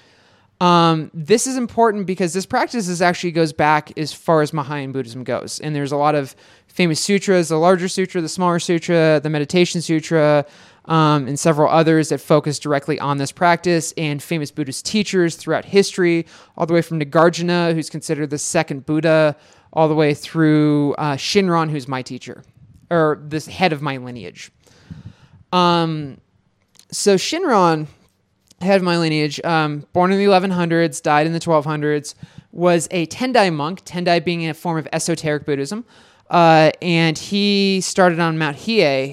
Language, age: English, 20-39